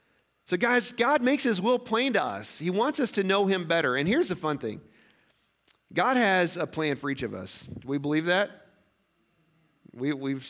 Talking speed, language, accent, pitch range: 195 wpm, English, American, 155-200 Hz